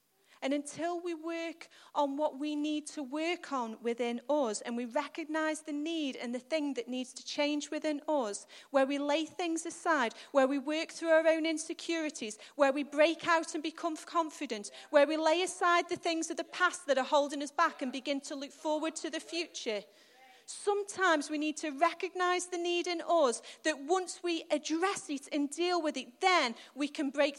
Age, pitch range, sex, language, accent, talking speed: 30-49, 285-360 Hz, female, English, British, 195 wpm